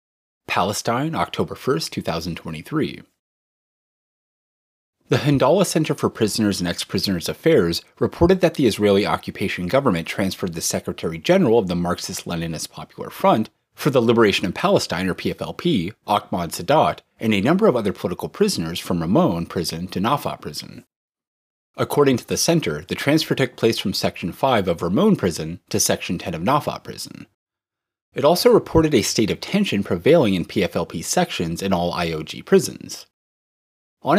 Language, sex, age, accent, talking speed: English, male, 30-49, American, 150 wpm